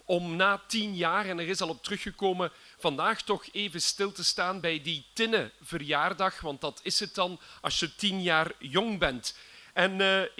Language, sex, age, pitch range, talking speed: Dutch, male, 40-59, 180-220 Hz, 190 wpm